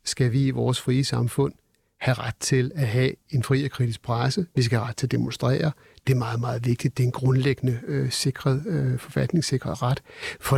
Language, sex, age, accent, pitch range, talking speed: Danish, male, 60-79, native, 130-155 Hz, 205 wpm